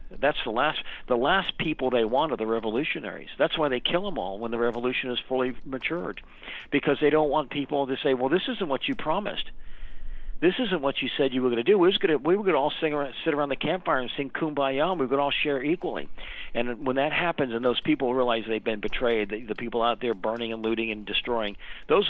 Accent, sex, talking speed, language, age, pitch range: American, male, 260 wpm, English, 50-69, 110-135 Hz